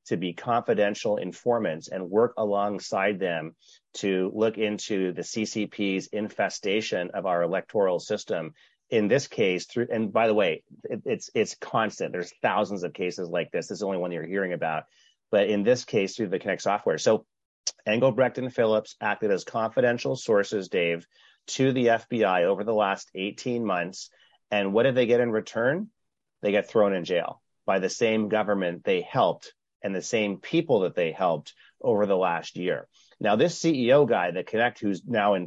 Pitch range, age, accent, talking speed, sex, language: 90-120 Hz, 30-49, American, 180 wpm, male, English